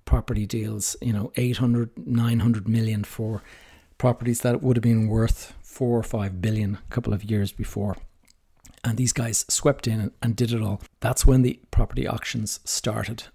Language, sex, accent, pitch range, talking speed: English, male, Irish, 105-125 Hz, 170 wpm